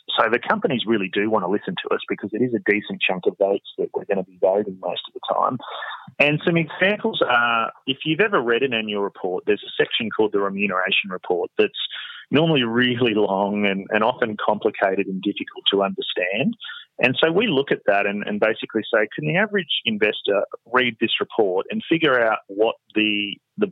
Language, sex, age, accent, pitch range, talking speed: English, male, 30-49, Australian, 105-145 Hz, 205 wpm